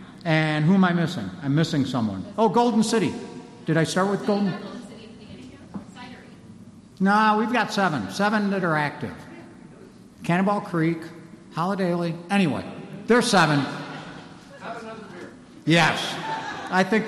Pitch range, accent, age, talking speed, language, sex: 150-200 Hz, American, 60-79, 135 wpm, English, male